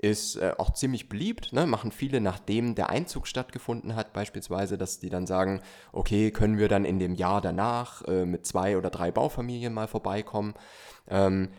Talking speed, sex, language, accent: 170 wpm, male, German, German